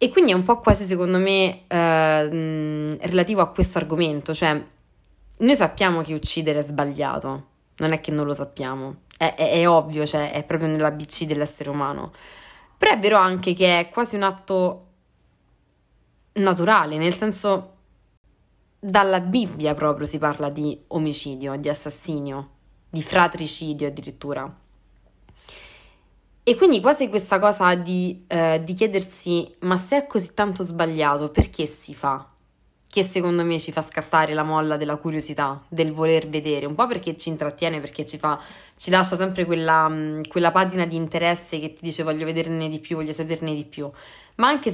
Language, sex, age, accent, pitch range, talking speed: Italian, female, 20-39, native, 150-185 Hz, 165 wpm